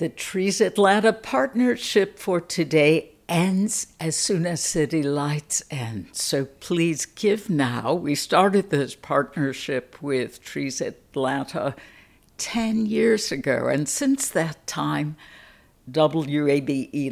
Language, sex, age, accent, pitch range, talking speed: English, female, 60-79, American, 135-180 Hz, 110 wpm